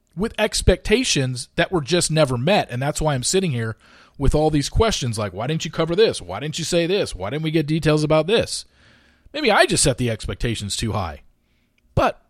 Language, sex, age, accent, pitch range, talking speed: English, male, 40-59, American, 125-185 Hz, 215 wpm